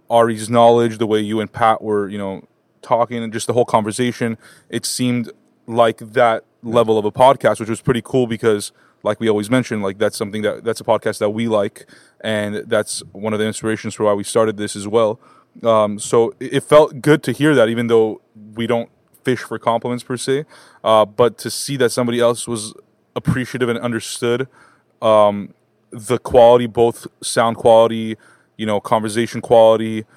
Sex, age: male, 20-39